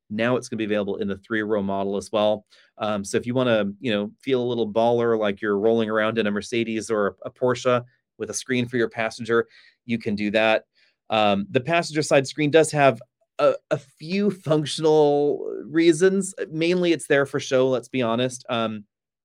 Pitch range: 110-130 Hz